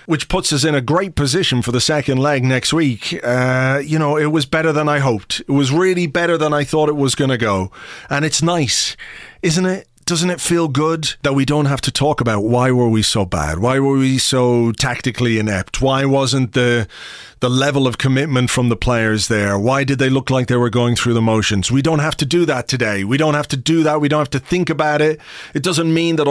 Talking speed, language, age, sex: 245 wpm, English, 30-49, male